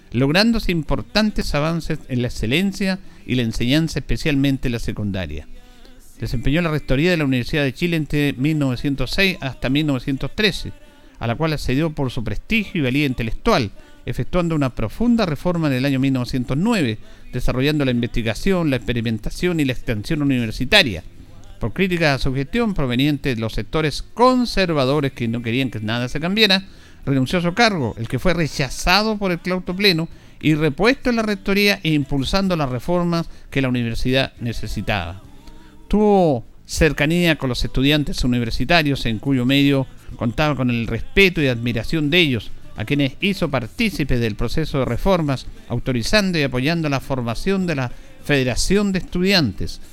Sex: male